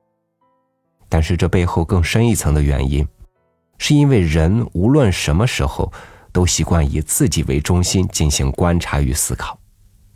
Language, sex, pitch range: Chinese, male, 75-100 Hz